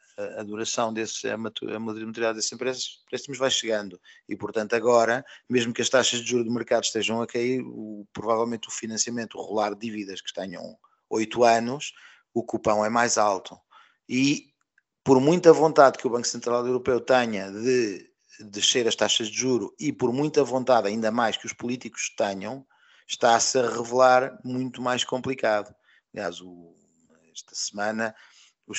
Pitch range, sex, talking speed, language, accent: 105-125 Hz, male, 160 wpm, Portuguese, Portuguese